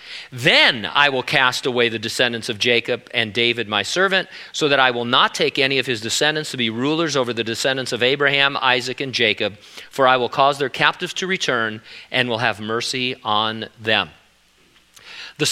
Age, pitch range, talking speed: 40-59, 115-150 Hz, 190 wpm